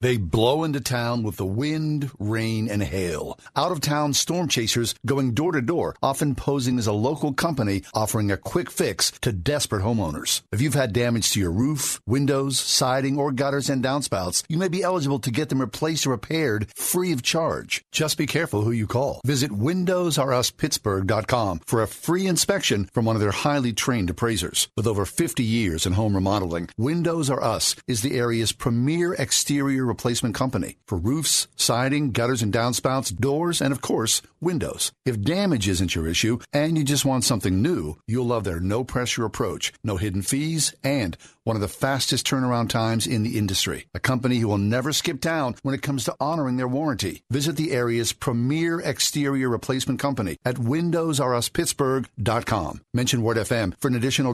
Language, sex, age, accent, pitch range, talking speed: English, male, 50-69, American, 110-145 Hz, 175 wpm